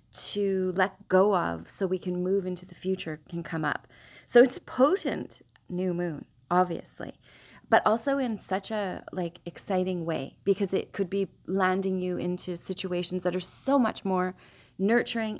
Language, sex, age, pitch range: English, female, 30-49, 175-215 Hz